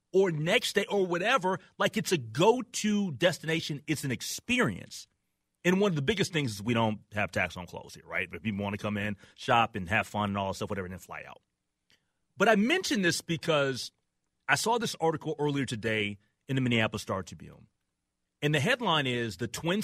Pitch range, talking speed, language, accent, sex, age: 105-160 Hz, 210 wpm, English, American, male, 30-49